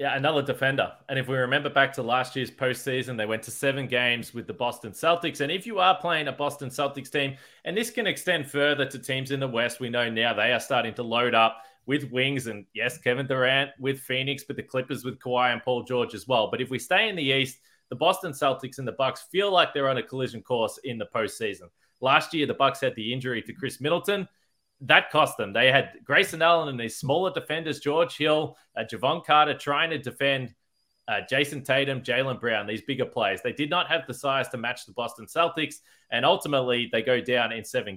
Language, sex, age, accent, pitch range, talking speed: English, male, 20-39, Australian, 125-150 Hz, 230 wpm